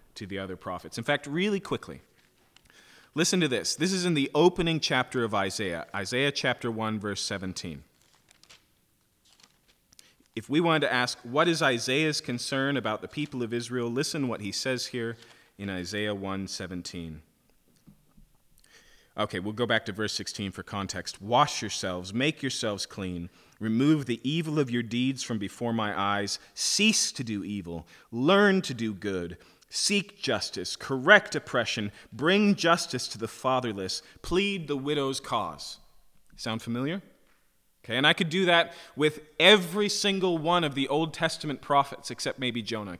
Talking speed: 155 wpm